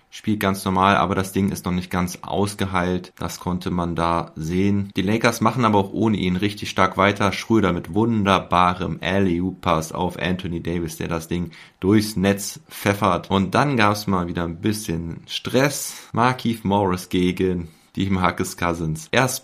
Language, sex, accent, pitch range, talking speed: German, male, German, 90-105 Hz, 175 wpm